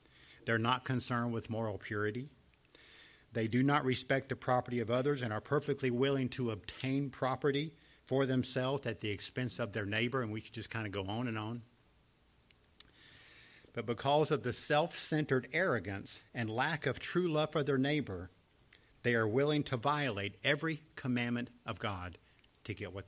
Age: 50-69